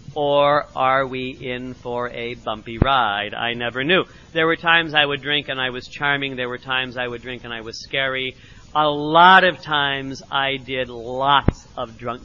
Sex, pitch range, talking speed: male, 125-165 Hz, 195 wpm